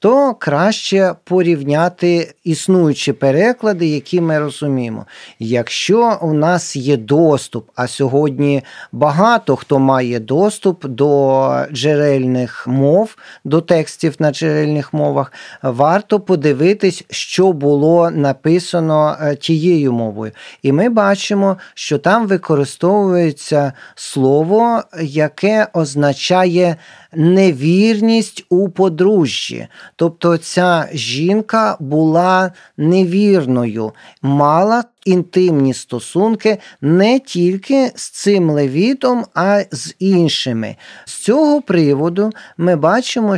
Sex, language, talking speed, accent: male, Ukrainian, 95 wpm, native